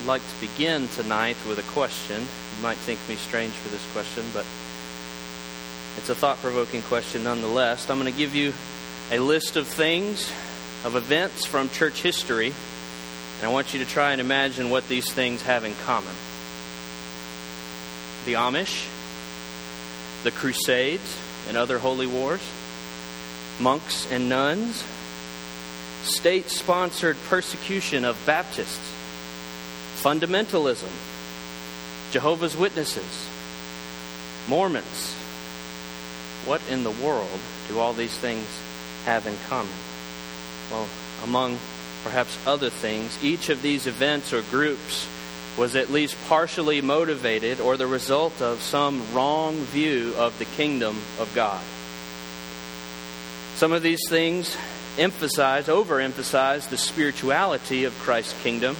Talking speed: 120 wpm